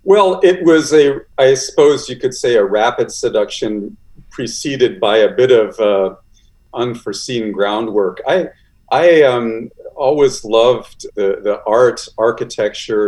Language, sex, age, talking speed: English, male, 50-69, 125 wpm